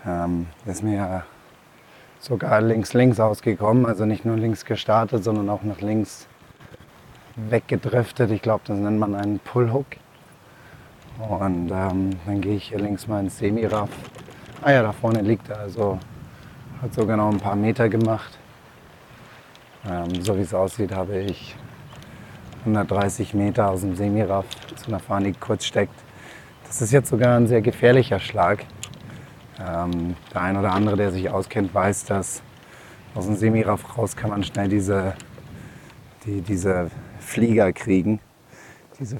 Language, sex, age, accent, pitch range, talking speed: German, male, 20-39, German, 95-115 Hz, 145 wpm